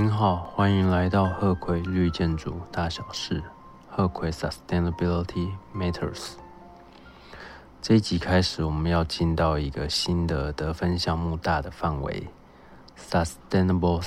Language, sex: Chinese, male